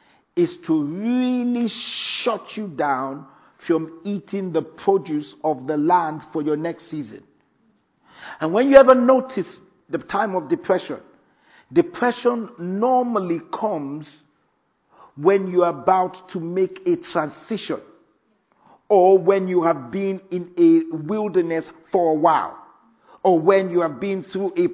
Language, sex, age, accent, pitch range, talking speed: English, male, 50-69, Nigerian, 160-225 Hz, 135 wpm